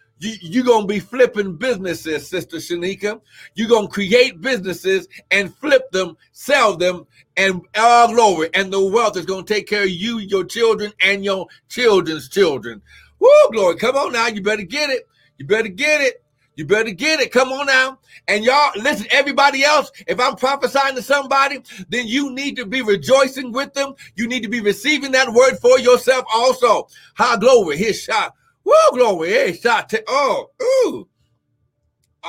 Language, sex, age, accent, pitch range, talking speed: English, male, 60-79, American, 210-285 Hz, 175 wpm